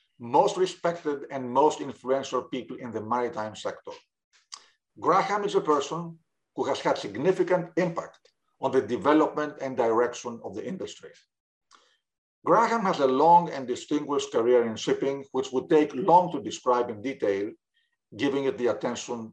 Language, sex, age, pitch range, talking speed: English, male, 50-69, 130-180 Hz, 150 wpm